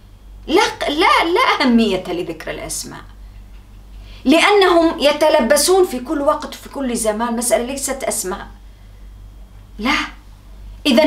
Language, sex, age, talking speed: English, female, 40-59, 100 wpm